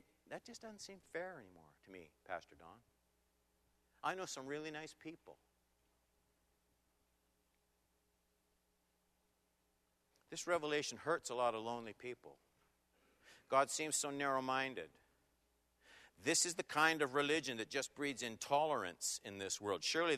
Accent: American